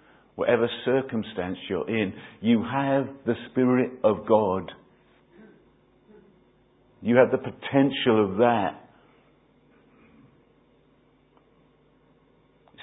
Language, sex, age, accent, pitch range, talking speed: English, male, 50-69, British, 130-195 Hz, 80 wpm